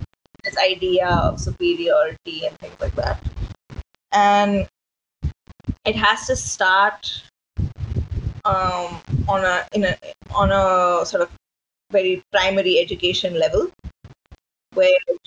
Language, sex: English, female